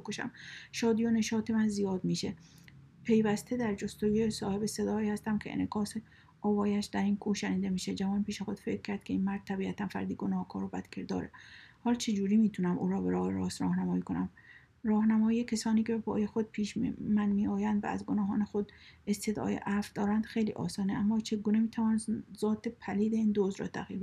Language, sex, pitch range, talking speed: Persian, female, 200-220 Hz, 180 wpm